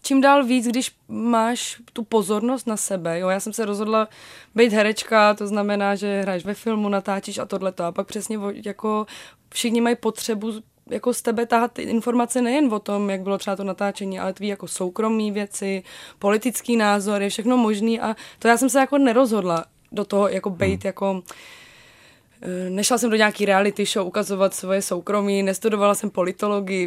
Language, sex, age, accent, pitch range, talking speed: Czech, female, 20-39, native, 200-225 Hz, 175 wpm